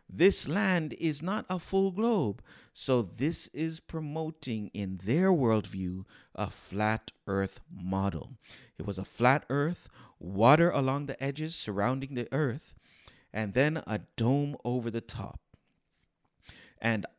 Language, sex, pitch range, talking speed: English, male, 100-140 Hz, 135 wpm